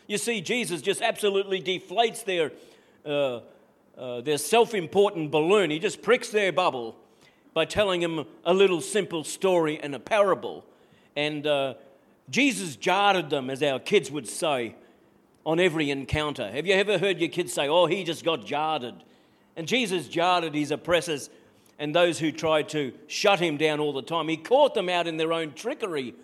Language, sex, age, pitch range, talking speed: English, male, 50-69, 150-195 Hz, 175 wpm